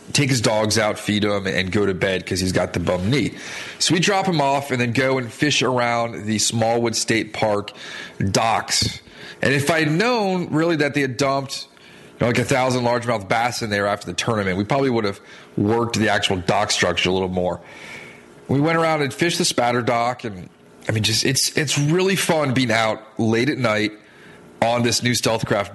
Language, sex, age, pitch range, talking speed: English, male, 30-49, 105-135 Hz, 210 wpm